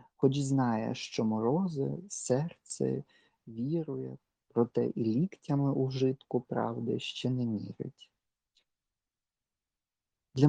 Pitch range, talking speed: 115-155 Hz, 90 wpm